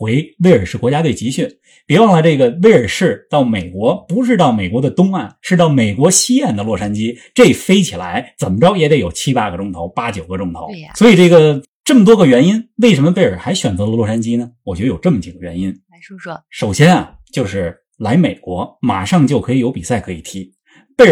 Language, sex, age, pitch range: Chinese, male, 20-39, 120-200 Hz